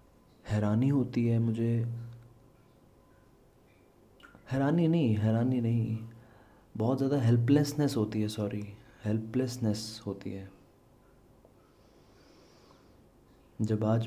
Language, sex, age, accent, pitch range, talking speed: Hindi, male, 30-49, native, 110-125 Hz, 80 wpm